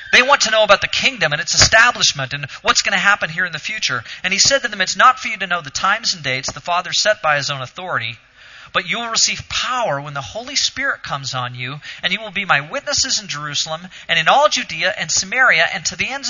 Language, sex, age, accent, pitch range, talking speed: English, male, 40-59, American, 135-200 Hz, 260 wpm